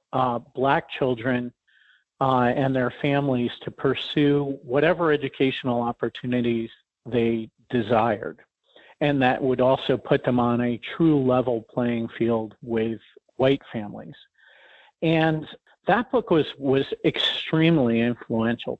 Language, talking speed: English, 115 wpm